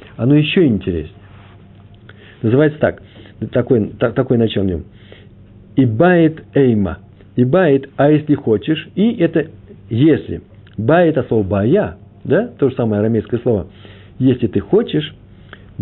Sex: male